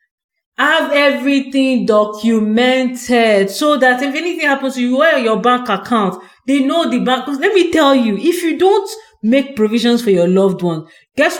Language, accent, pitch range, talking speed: English, Nigerian, 185-255 Hz, 170 wpm